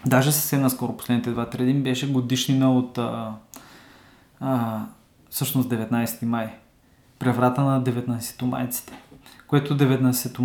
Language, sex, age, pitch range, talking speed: Bulgarian, male, 20-39, 125-145 Hz, 115 wpm